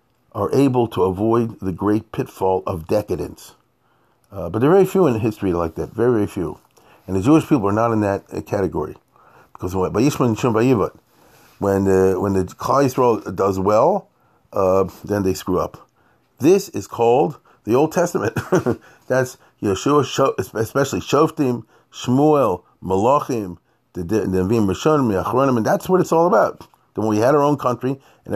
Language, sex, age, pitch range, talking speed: English, male, 40-59, 100-130 Hz, 155 wpm